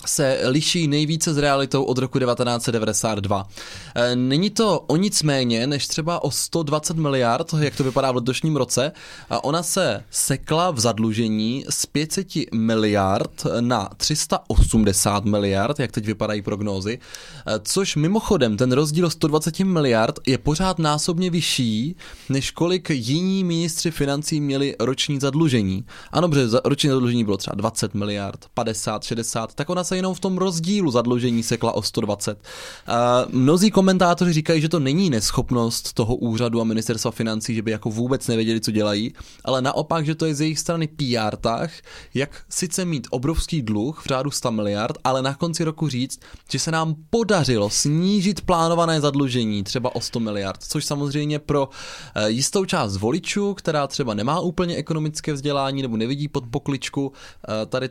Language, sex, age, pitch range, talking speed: Czech, male, 20-39, 115-160 Hz, 155 wpm